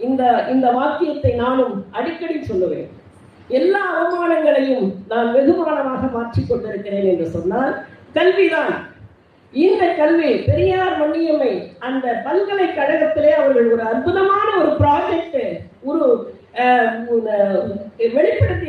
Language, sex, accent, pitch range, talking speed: Tamil, female, native, 255-345 Hz, 80 wpm